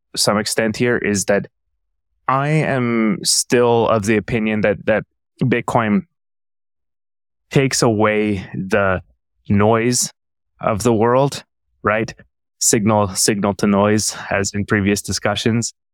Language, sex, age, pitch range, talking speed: English, male, 20-39, 100-115 Hz, 115 wpm